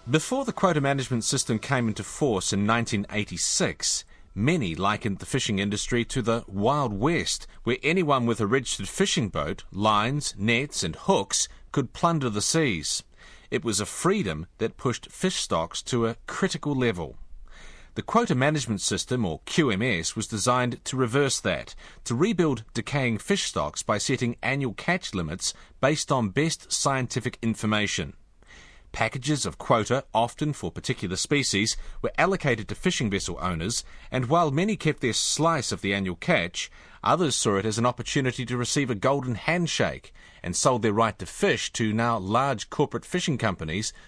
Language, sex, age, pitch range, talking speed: English, male, 40-59, 105-140 Hz, 160 wpm